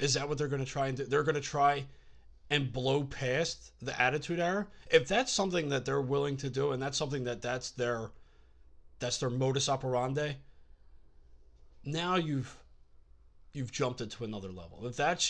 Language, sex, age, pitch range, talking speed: English, male, 30-49, 110-145 Hz, 185 wpm